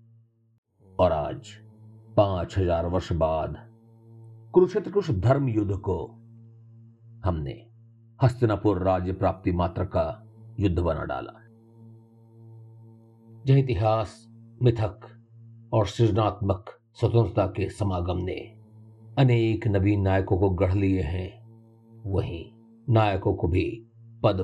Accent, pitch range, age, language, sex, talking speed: native, 100-115 Hz, 50-69, Hindi, male, 100 wpm